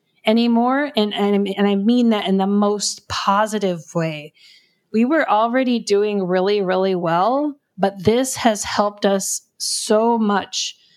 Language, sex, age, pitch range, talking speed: English, female, 30-49, 185-225 Hz, 140 wpm